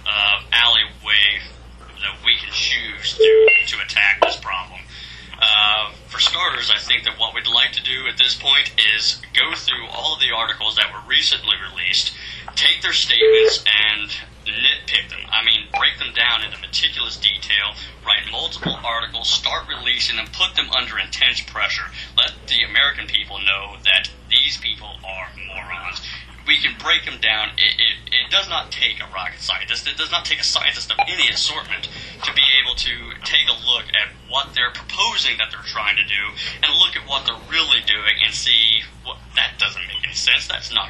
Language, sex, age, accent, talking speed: English, male, 30-49, American, 185 wpm